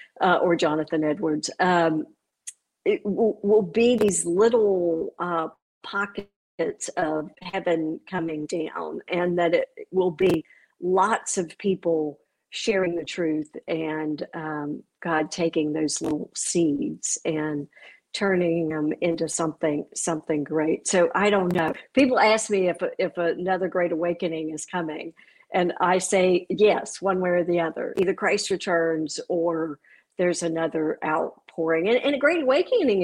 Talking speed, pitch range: 140 wpm, 165-200 Hz